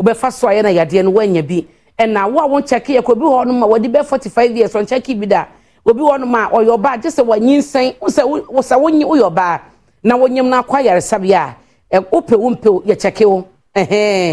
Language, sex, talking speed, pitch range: English, female, 185 wpm, 195-255 Hz